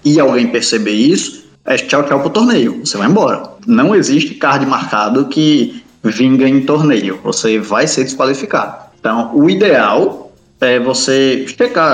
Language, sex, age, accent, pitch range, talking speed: Portuguese, male, 20-39, Brazilian, 130-210 Hz, 150 wpm